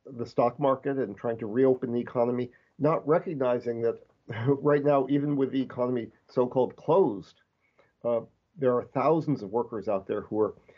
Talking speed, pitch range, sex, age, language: 165 wpm, 120-140 Hz, male, 50-69, English